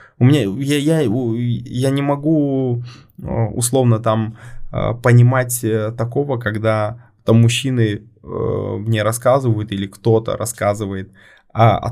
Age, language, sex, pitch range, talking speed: 20-39, Russian, male, 110-125 Hz, 95 wpm